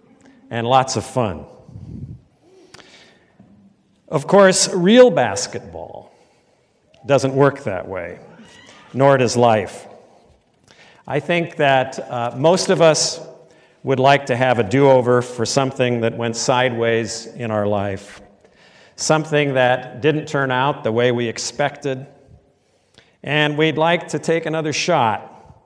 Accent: American